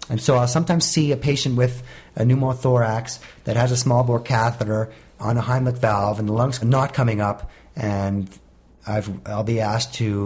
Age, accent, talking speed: 40-59, American, 185 wpm